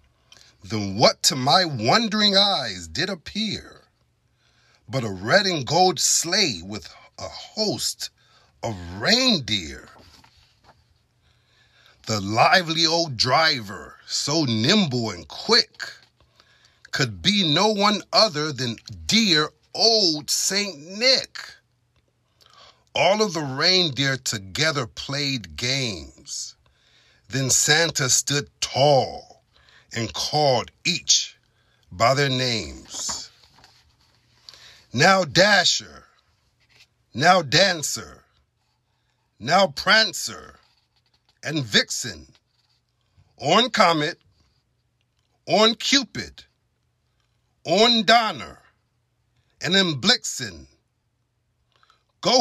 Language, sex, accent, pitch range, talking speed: English, male, American, 115-190 Hz, 80 wpm